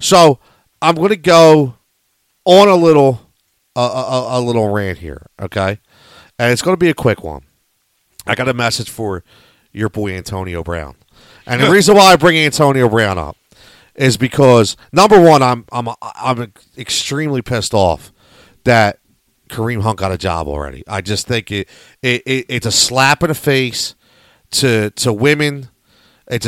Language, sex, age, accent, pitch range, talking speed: English, male, 40-59, American, 115-155 Hz, 165 wpm